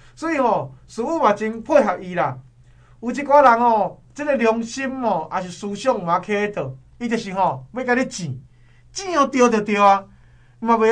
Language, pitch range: Chinese, 155-240 Hz